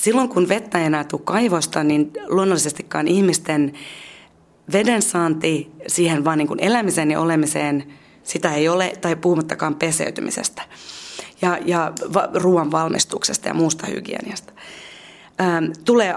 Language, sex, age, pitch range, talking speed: Finnish, female, 30-49, 165-200 Hz, 120 wpm